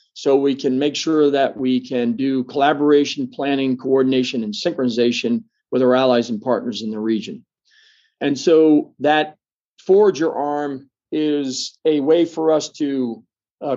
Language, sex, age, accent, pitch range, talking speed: English, male, 40-59, American, 130-165 Hz, 150 wpm